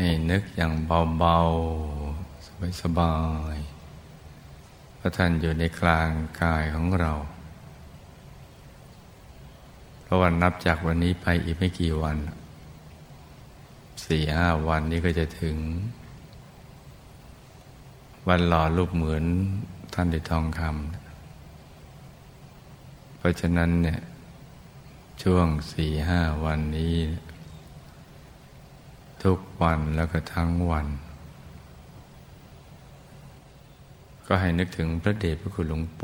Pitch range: 80-90 Hz